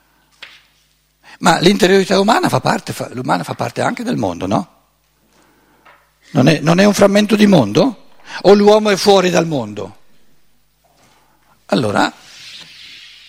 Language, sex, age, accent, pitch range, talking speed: Italian, male, 60-79, native, 145-215 Hz, 125 wpm